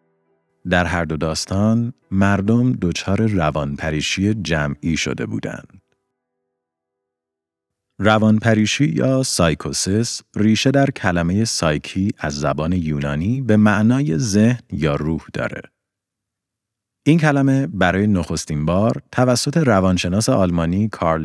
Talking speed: 100 wpm